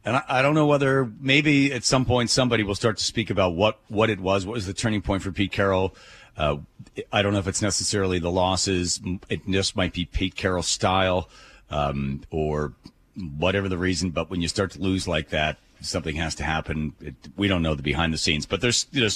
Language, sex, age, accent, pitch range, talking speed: English, male, 40-59, American, 90-120 Hz, 220 wpm